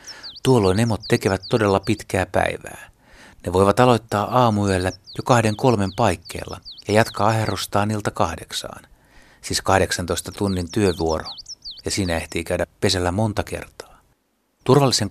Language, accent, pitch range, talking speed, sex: Finnish, native, 90-120 Hz, 125 wpm, male